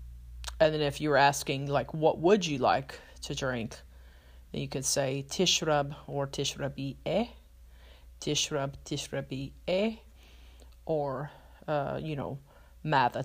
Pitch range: 130-160 Hz